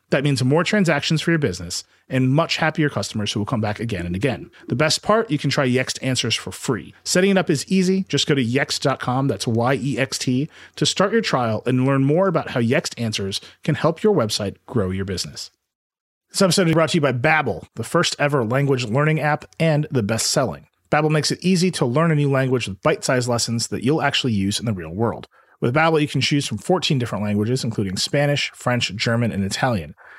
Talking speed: 215 wpm